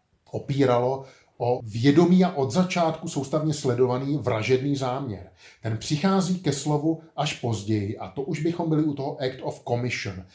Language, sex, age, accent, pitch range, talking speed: Czech, male, 30-49, native, 115-145 Hz, 150 wpm